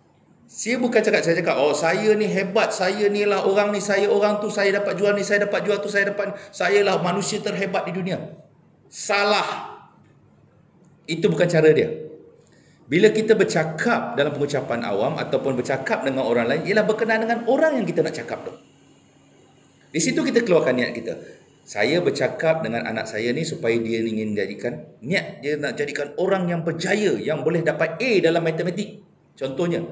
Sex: male